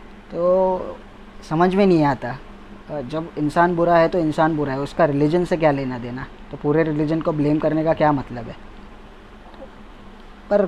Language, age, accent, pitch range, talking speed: Hindi, 20-39, native, 140-175 Hz, 170 wpm